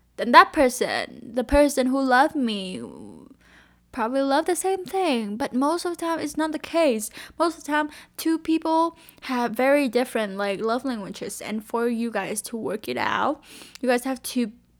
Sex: female